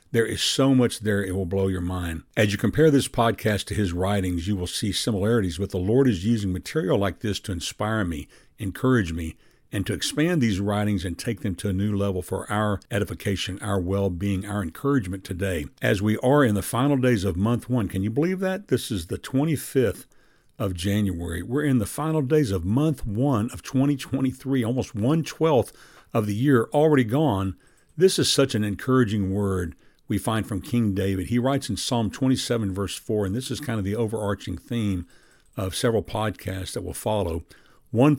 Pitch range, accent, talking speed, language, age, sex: 95-125 Hz, American, 195 wpm, English, 60-79, male